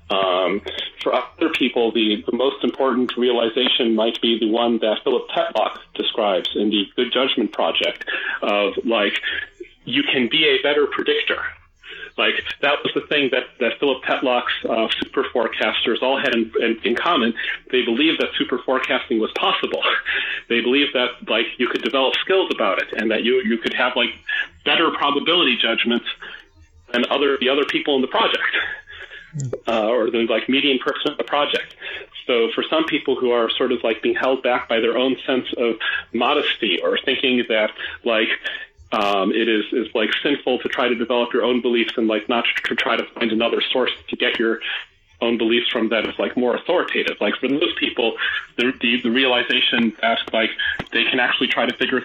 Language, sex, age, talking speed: English, male, 40-59, 190 wpm